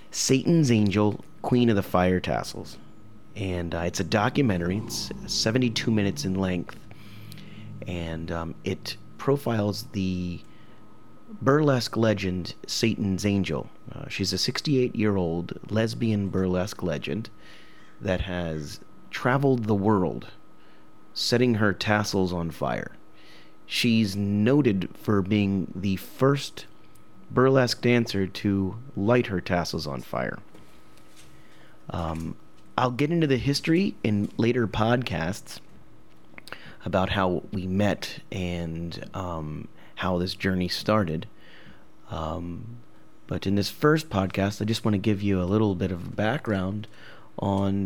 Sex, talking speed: male, 120 wpm